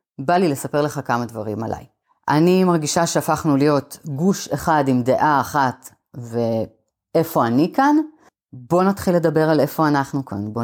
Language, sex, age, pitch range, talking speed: Hebrew, female, 30-49, 140-225 Hz, 150 wpm